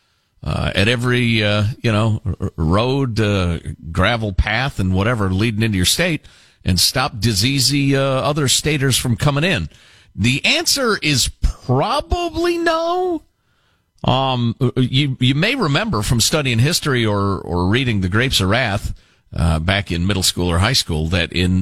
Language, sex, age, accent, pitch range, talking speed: English, male, 50-69, American, 90-135 Hz, 155 wpm